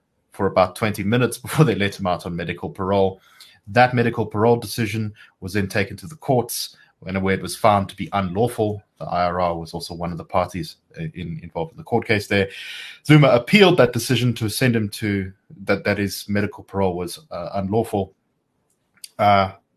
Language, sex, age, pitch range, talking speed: English, male, 30-49, 95-115 Hz, 190 wpm